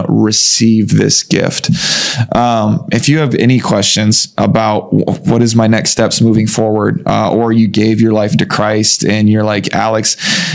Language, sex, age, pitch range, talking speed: English, male, 20-39, 110-120 Hz, 170 wpm